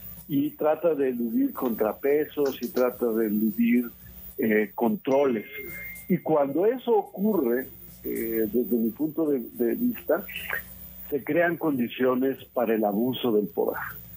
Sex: male